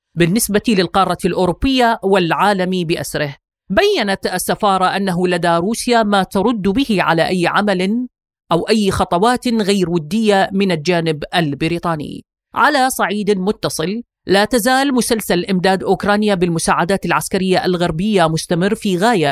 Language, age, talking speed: Arabic, 30-49, 120 wpm